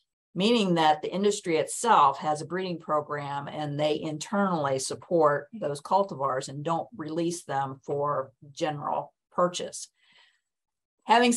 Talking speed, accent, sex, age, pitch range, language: 120 wpm, American, female, 50-69, 150-180 Hz, English